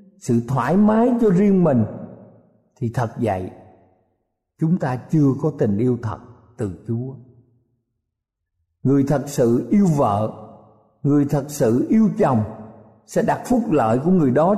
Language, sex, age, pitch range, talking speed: Vietnamese, male, 50-69, 115-185 Hz, 145 wpm